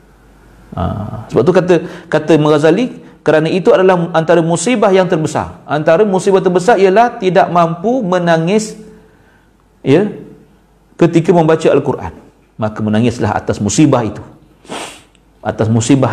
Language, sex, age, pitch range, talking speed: Malay, male, 50-69, 115-170 Hz, 120 wpm